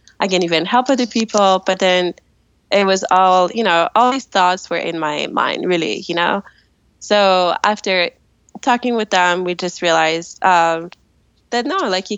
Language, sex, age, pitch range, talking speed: English, female, 20-39, 180-235 Hz, 175 wpm